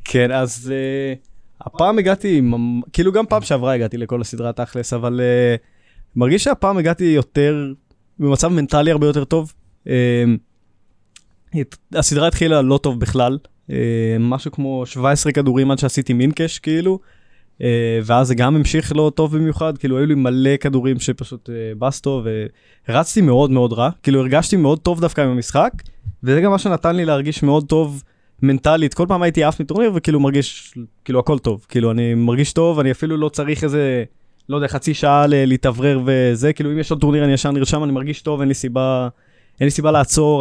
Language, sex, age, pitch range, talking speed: Hebrew, male, 20-39, 120-150 Hz, 180 wpm